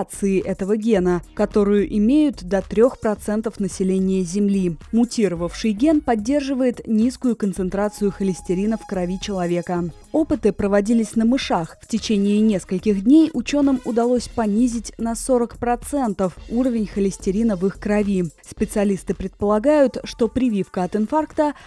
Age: 20-39